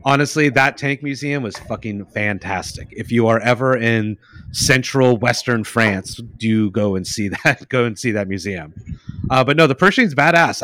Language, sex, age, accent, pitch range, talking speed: English, male, 30-49, American, 110-140 Hz, 175 wpm